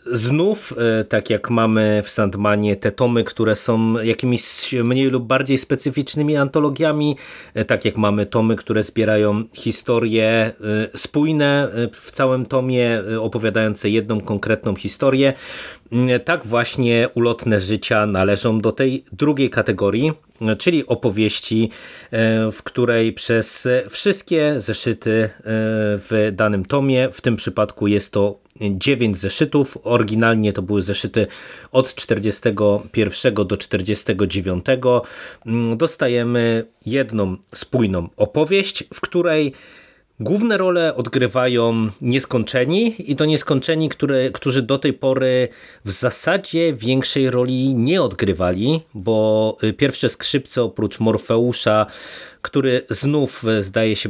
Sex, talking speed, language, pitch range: male, 110 wpm, Polish, 110-135 Hz